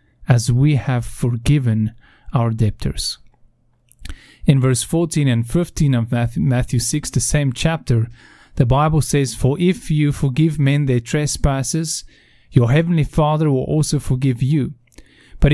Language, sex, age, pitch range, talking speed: English, male, 30-49, 125-155 Hz, 135 wpm